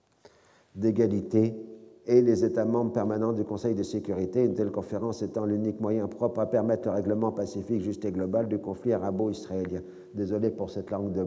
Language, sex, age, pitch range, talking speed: French, male, 50-69, 105-125 Hz, 175 wpm